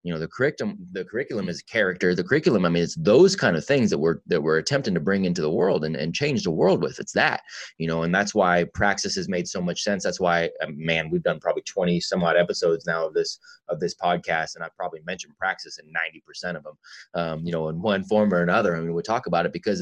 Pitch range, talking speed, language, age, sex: 85-105 Hz, 260 wpm, English, 20-39, male